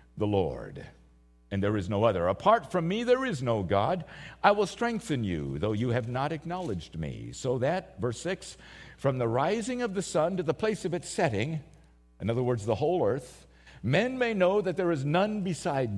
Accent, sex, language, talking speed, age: American, male, English, 205 wpm, 50-69